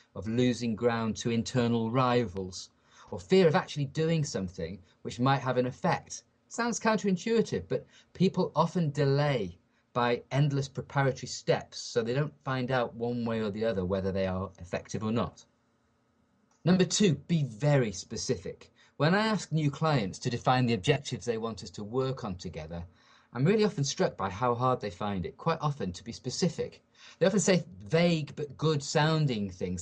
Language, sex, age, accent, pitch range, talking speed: English, male, 30-49, British, 115-160 Hz, 175 wpm